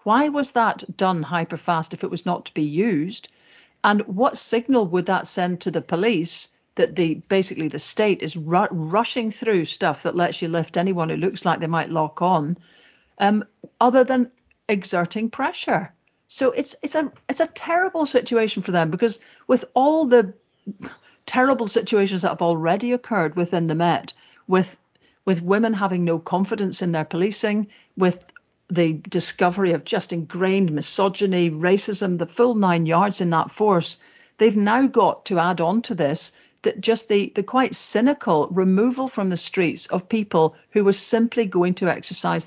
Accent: British